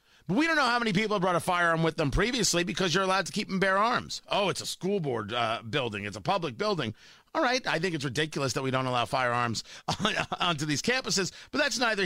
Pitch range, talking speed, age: 180-255 Hz, 240 wpm, 40-59